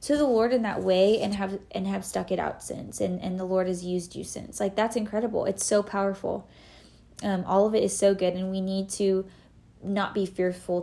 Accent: American